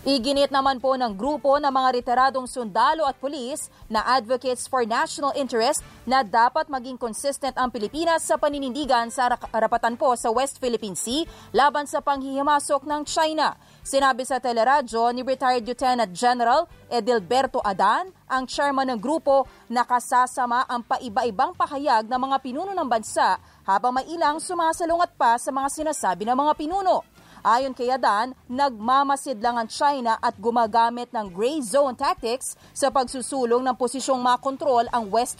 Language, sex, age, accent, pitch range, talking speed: English, female, 30-49, Filipino, 240-280 Hz, 150 wpm